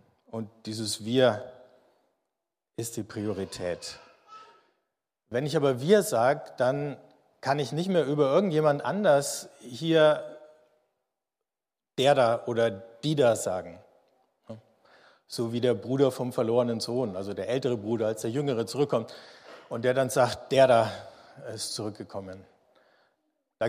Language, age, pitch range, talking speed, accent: German, 50-69, 110-145 Hz, 125 wpm, German